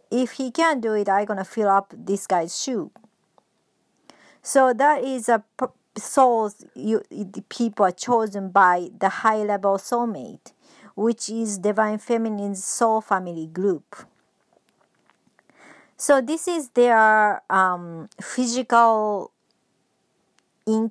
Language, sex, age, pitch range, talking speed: English, male, 40-59, 195-245 Hz, 125 wpm